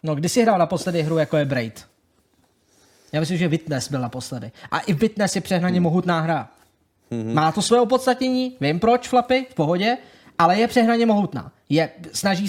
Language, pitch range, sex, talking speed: Czech, 155-195 Hz, male, 190 wpm